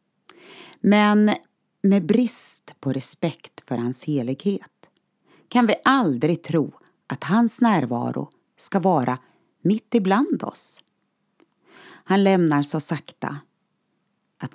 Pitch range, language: 140-205 Hz, Swedish